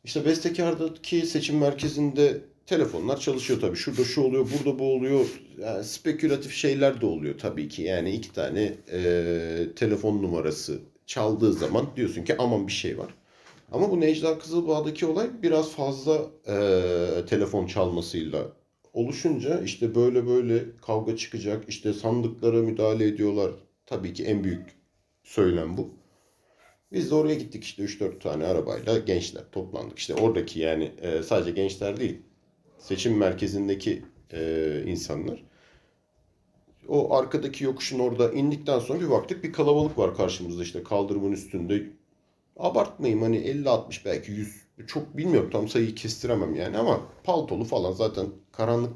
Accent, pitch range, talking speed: native, 100-145 Hz, 135 wpm